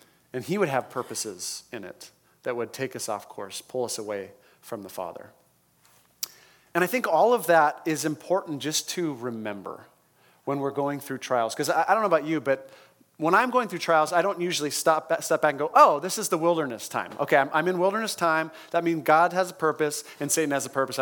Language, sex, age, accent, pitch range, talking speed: English, male, 30-49, American, 135-180 Hz, 215 wpm